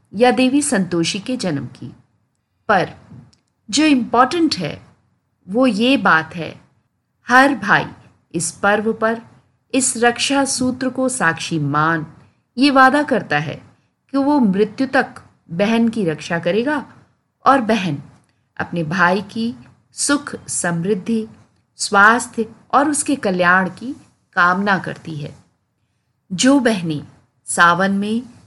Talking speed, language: 120 wpm, Hindi